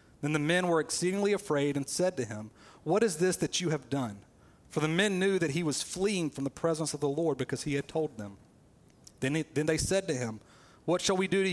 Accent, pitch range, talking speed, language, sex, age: American, 130-175 Hz, 250 wpm, English, male, 40-59